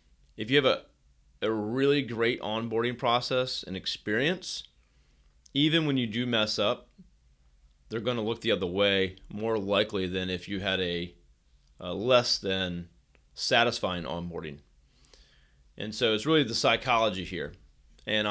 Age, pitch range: 30-49, 70-120 Hz